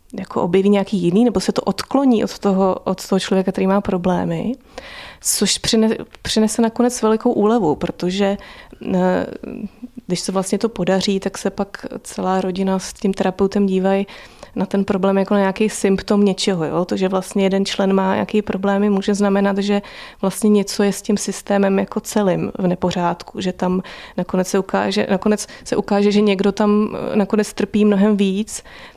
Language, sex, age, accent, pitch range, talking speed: Czech, female, 20-39, native, 185-210 Hz, 165 wpm